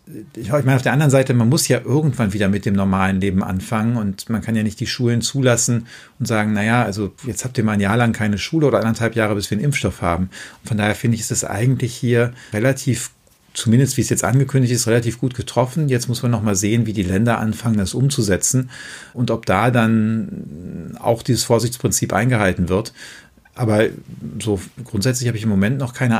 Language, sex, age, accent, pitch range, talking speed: German, male, 50-69, German, 110-130 Hz, 215 wpm